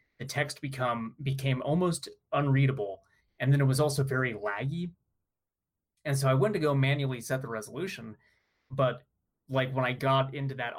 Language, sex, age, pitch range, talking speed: English, male, 30-49, 125-155 Hz, 165 wpm